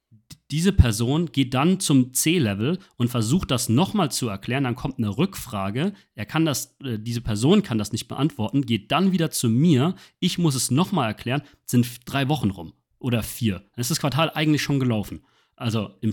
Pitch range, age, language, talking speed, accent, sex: 105-130 Hz, 40-59, German, 185 wpm, German, male